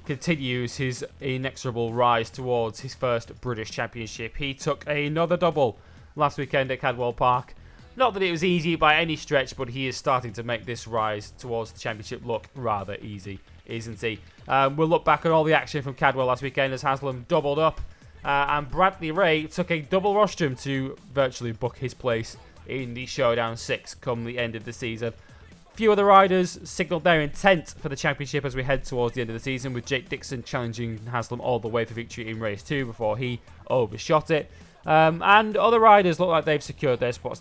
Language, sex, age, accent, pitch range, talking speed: English, male, 20-39, British, 115-150 Hz, 205 wpm